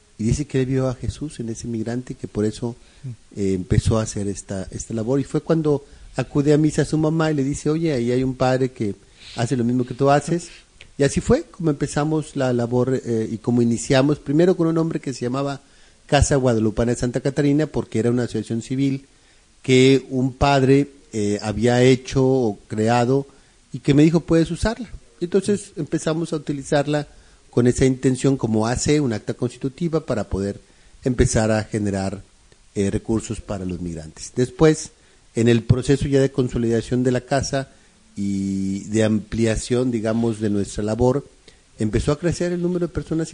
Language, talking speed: Spanish, 185 wpm